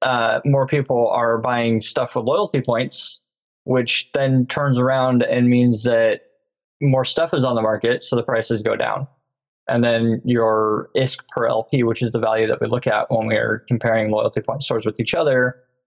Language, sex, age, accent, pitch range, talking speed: English, male, 20-39, American, 110-125 Hz, 195 wpm